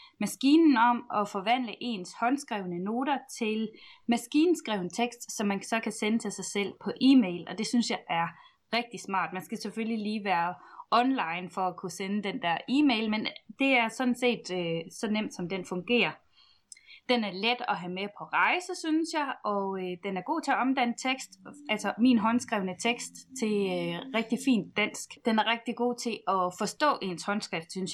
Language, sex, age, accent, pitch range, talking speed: Danish, female, 20-39, native, 190-245 Hz, 190 wpm